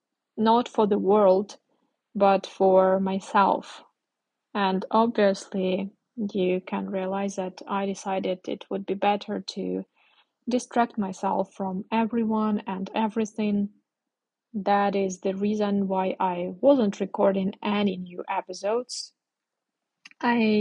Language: English